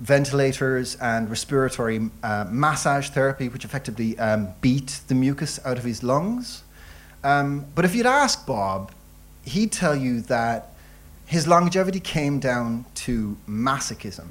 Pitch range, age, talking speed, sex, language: 85-140 Hz, 30-49, 135 wpm, male, English